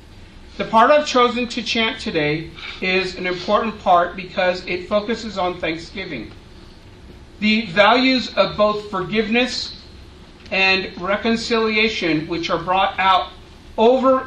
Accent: American